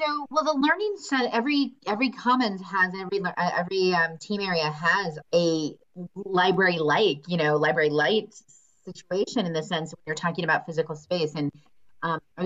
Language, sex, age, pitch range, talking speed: English, female, 30-49, 150-195 Hz, 165 wpm